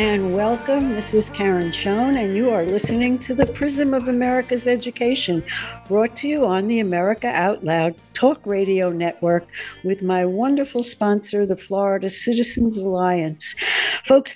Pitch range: 185-235 Hz